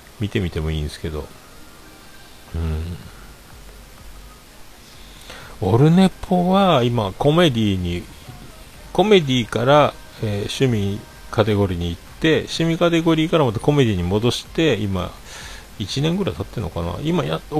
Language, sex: Japanese, male